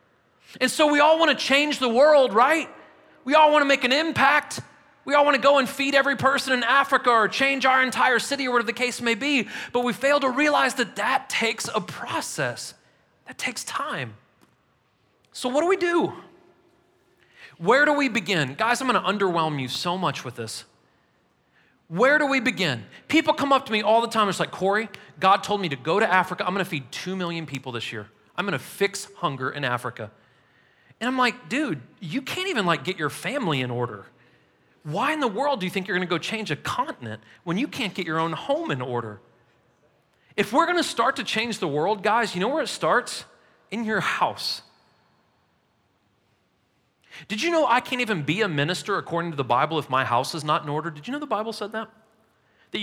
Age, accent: 30-49, American